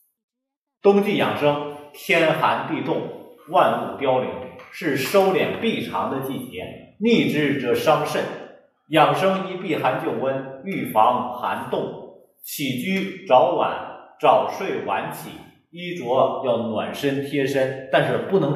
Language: Chinese